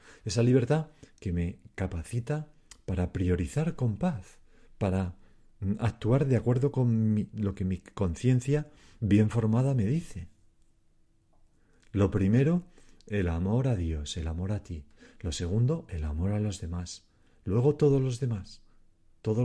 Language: Spanish